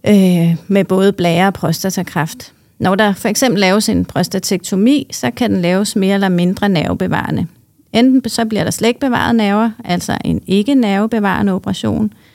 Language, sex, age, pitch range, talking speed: Danish, female, 30-49, 170-210 Hz, 155 wpm